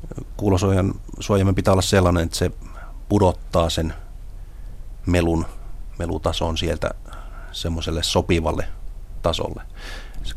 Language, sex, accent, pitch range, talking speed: Finnish, male, native, 80-95 Hz, 95 wpm